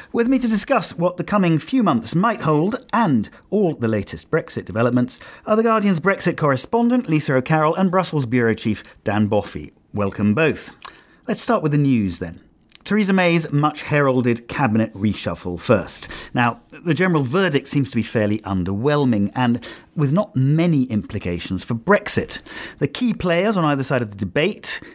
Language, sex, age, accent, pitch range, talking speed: English, male, 40-59, British, 115-170 Hz, 170 wpm